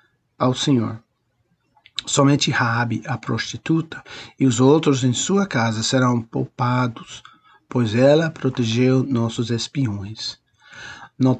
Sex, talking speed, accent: male, 105 wpm, Brazilian